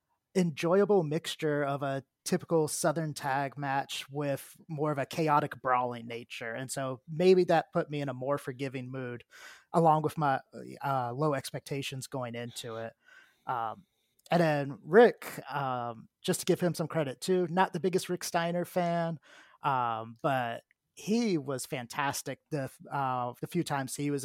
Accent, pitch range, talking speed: American, 135-165 Hz, 160 wpm